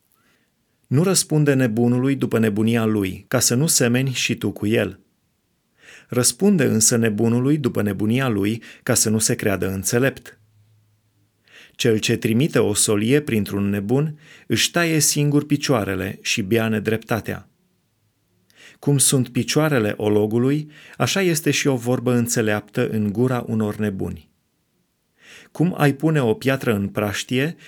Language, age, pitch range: Romanian, 30-49, 110-140 Hz